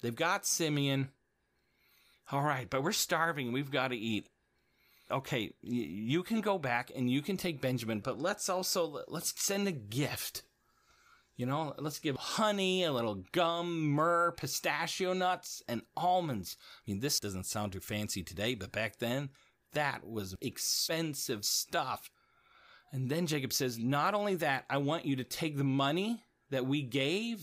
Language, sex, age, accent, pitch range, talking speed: English, male, 30-49, American, 130-185 Hz, 160 wpm